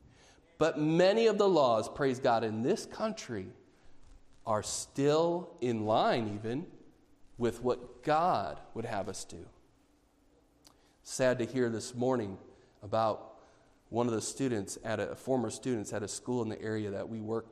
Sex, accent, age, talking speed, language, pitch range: male, American, 40-59, 160 wpm, English, 110-130 Hz